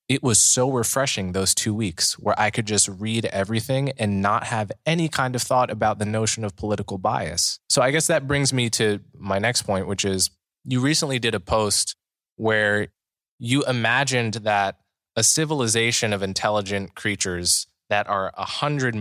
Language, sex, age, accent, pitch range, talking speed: English, male, 20-39, American, 95-115 Hz, 175 wpm